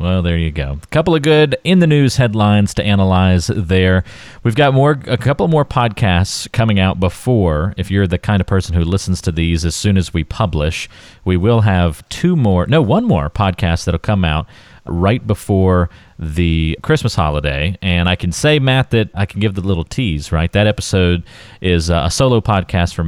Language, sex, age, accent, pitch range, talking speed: English, male, 40-59, American, 90-115 Hz, 200 wpm